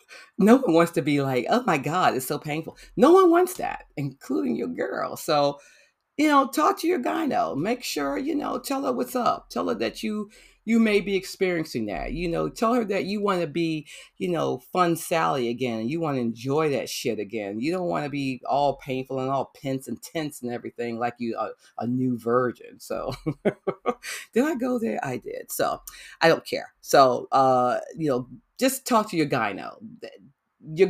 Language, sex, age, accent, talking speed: English, female, 40-59, American, 210 wpm